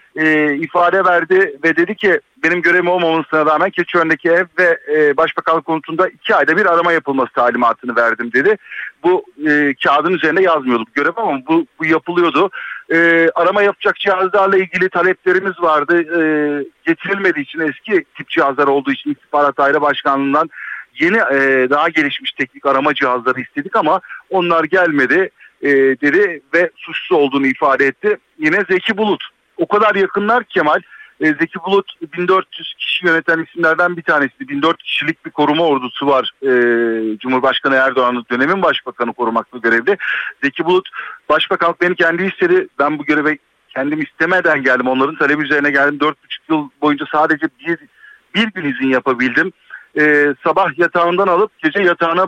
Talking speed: 150 wpm